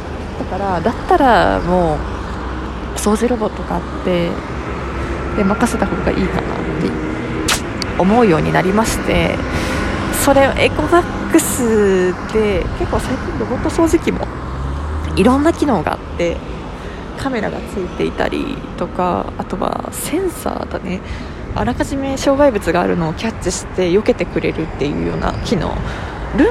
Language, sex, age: Japanese, female, 20-39